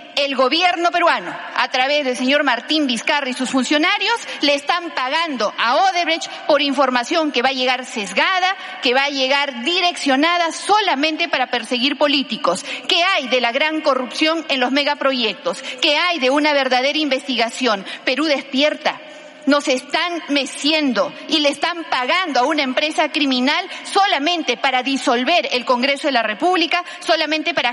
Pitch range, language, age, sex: 265-330 Hz, Spanish, 40-59, female